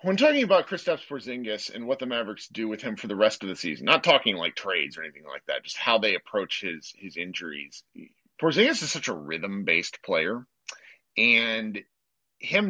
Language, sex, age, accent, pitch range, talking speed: English, male, 40-59, American, 110-175 Hz, 195 wpm